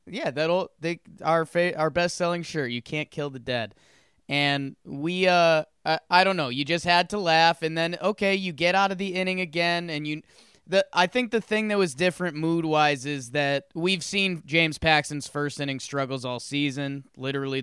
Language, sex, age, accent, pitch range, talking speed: English, male, 20-39, American, 135-180 Hz, 205 wpm